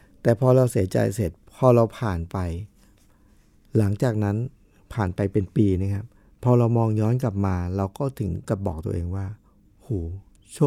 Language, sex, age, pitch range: Thai, male, 60-79, 95-120 Hz